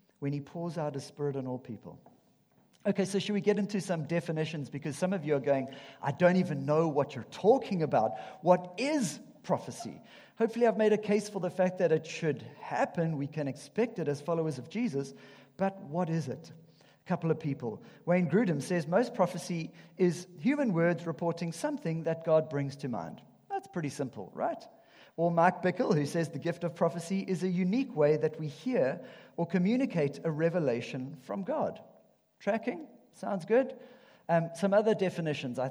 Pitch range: 150-200 Hz